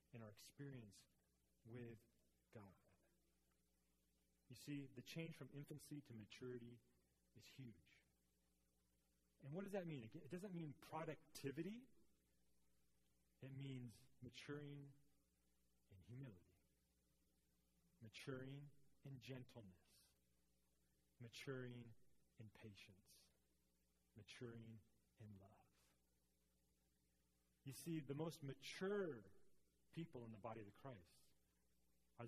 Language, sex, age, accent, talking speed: English, male, 40-59, American, 95 wpm